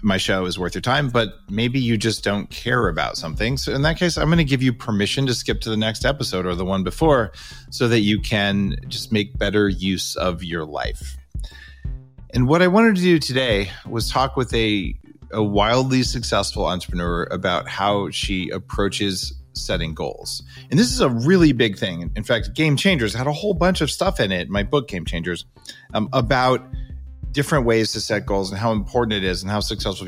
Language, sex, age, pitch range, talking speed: English, male, 30-49, 95-130 Hz, 210 wpm